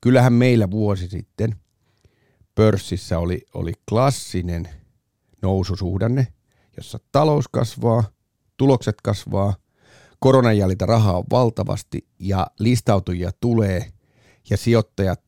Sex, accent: male, native